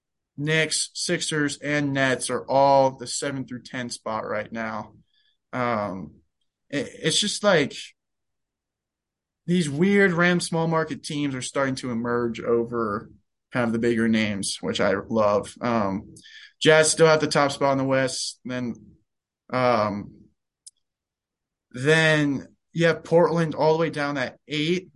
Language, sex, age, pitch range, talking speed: English, male, 20-39, 115-150 Hz, 140 wpm